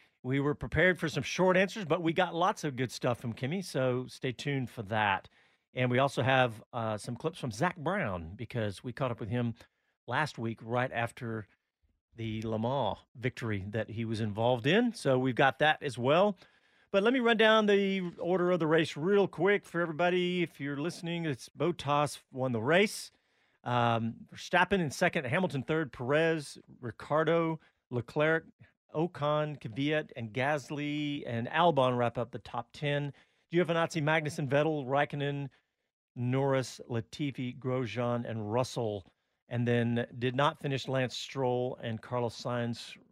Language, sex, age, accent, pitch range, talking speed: English, male, 40-59, American, 120-155 Hz, 165 wpm